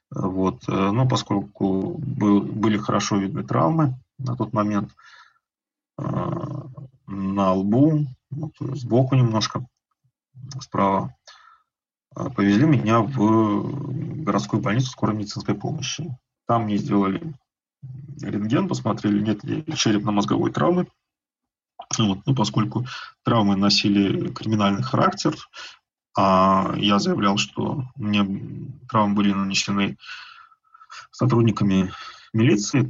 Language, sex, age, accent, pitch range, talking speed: Russian, male, 20-39, native, 105-135 Hz, 85 wpm